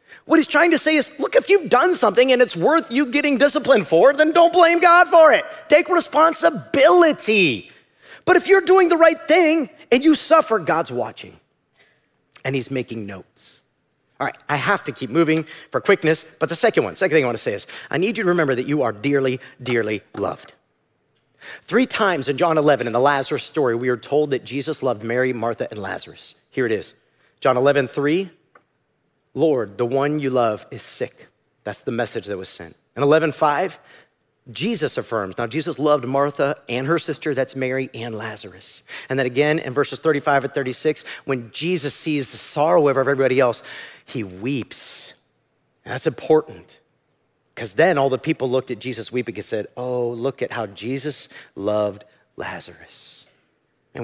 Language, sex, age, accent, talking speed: English, male, 40-59, American, 185 wpm